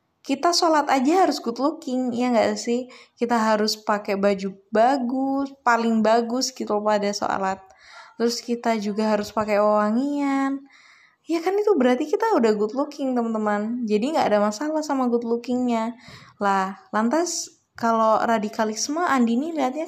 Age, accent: 20-39, native